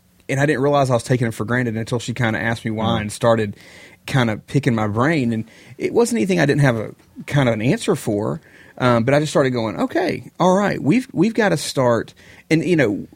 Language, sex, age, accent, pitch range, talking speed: English, male, 30-49, American, 110-135 Hz, 245 wpm